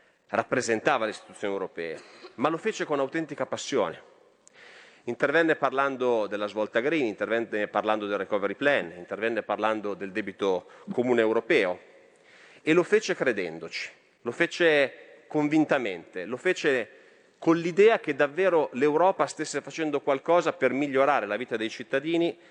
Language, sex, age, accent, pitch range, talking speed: Italian, male, 30-49, native, 115-165 Hz, 130 wpm